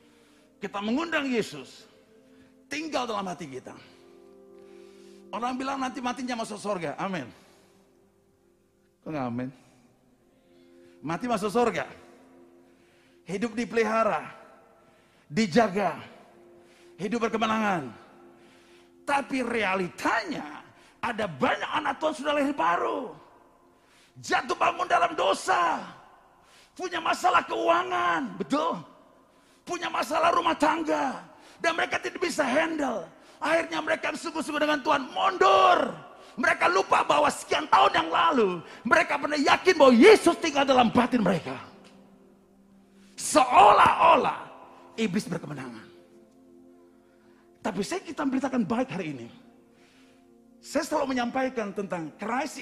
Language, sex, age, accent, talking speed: Indonesian, male, 40-59, native, 100 wpm